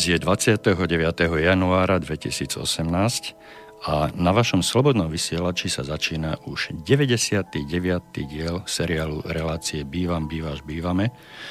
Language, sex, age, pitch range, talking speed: Slovak, male, 50-69, 85-110 Hz, 100 wpm